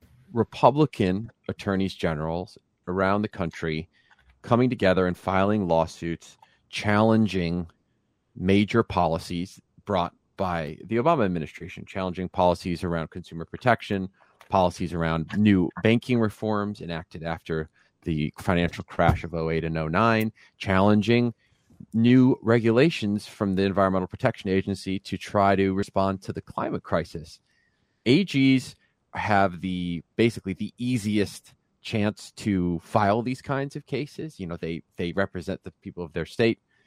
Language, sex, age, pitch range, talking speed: English, male, 40-59, 90-110 Hz, 125 wpm